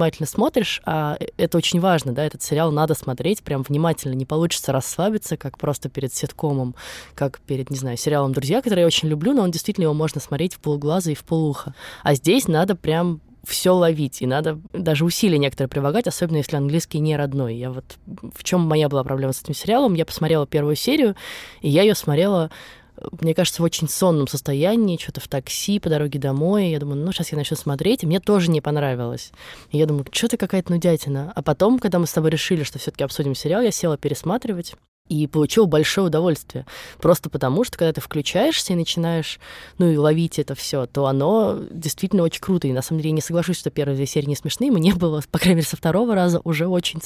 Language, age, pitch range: Russian, 20-39, 145-175 Hz